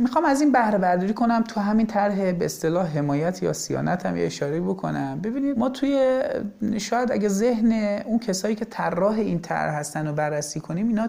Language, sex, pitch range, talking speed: Persian, male, 180-255 Hz, 185 wpm